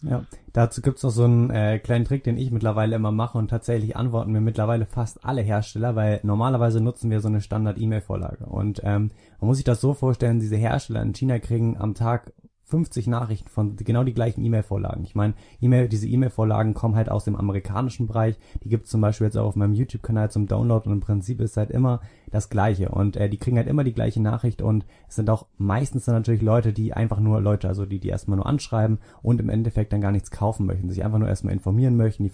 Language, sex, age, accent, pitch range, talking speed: German, male, 20-39, German, 105-115 Hz, 235 wpm